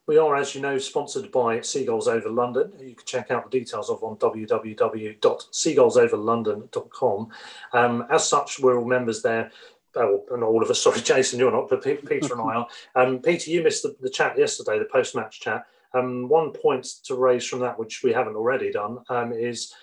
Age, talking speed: 30-49, 195 wpm